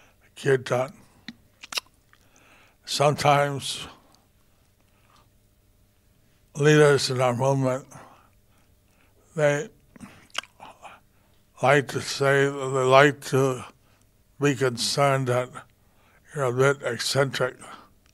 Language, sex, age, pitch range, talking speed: English, male, 60-79, 105-135 Hz, 65 wpm